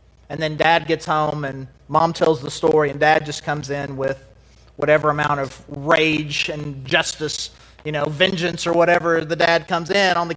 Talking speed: 190 wpm